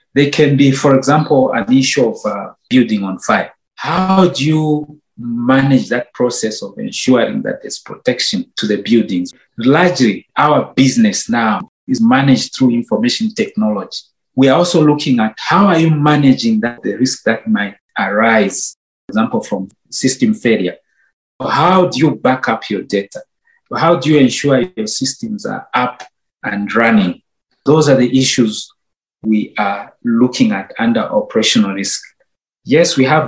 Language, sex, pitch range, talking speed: English, male, 110-155 Hz, 155 wpm